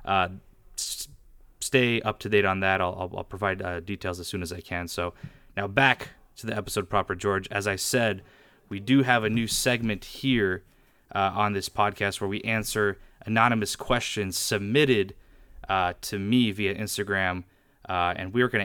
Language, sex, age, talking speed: English, male, 20-39, 175 wpm